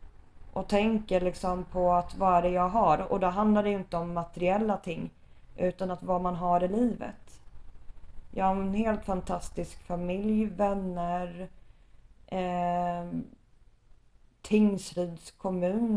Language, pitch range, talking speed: Swedish, 175-200 Hz, 130 wpm